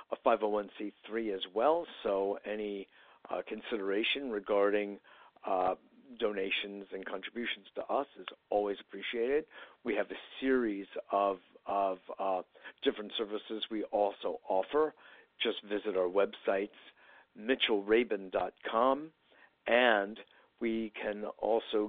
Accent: American